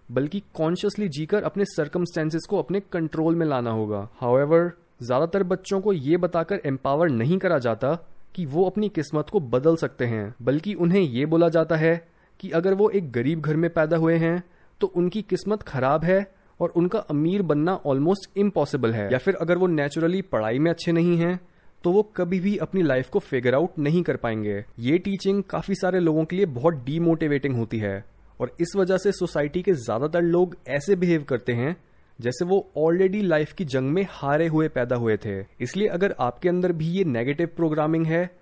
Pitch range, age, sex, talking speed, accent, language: 140-180 Hz, 20-39, male, 190 wpm, native, Hindi